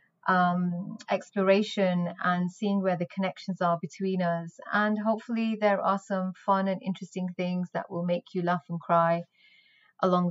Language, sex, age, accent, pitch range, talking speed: English, female, 30-49, British, 175-200 Hz, 155 wpm